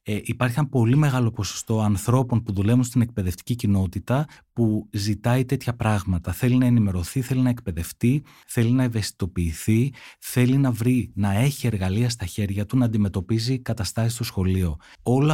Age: 30-49